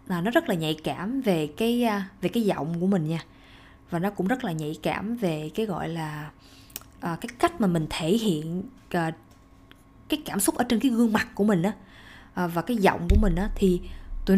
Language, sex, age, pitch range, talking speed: Vietnamese, female, 20-39, 175-230 Hz, 210 wpm